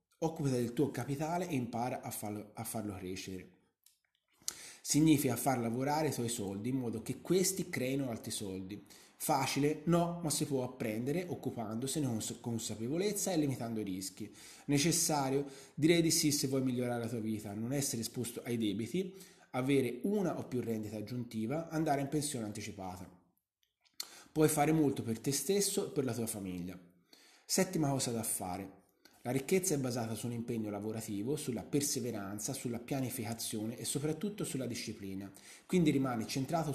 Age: 20-39